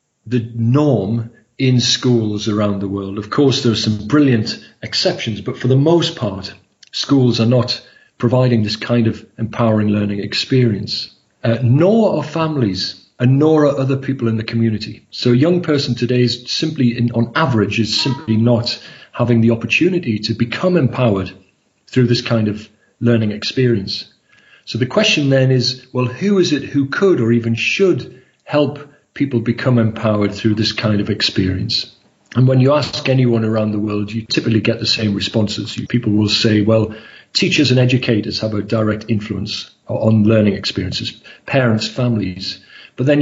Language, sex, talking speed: English, male, 165 wpm